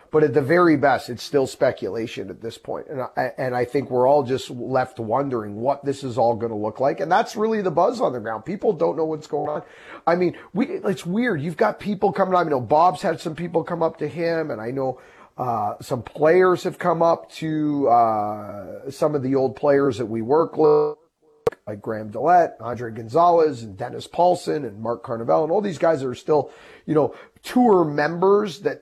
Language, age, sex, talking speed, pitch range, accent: English, 30-49, male, 220 wpm, 125-165 Hz, American